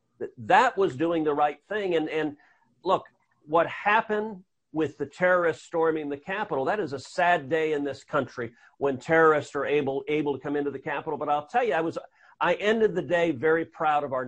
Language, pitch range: English, 140-170 Hz